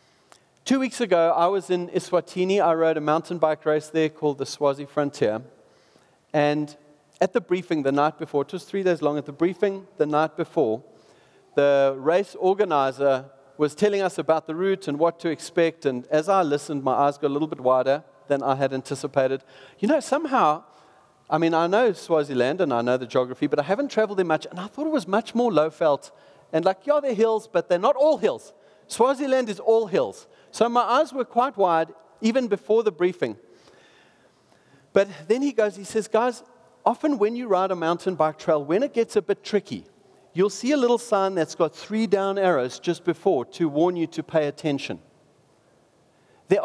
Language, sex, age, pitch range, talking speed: English, male, 40-59, 150-215 Hz, 200 wpm